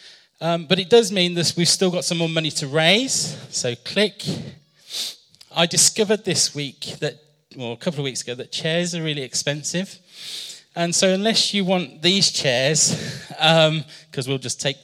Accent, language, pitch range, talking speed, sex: British, English, 135-175 Hz, 185 wpm, male